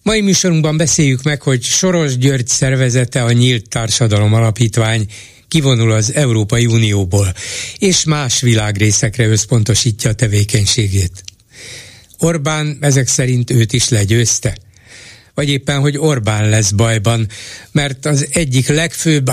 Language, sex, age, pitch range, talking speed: Hungarian, male, 60-79, 110-140 Hz, 120 wpm